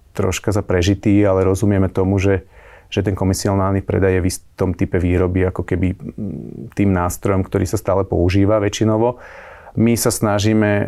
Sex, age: male, 30-49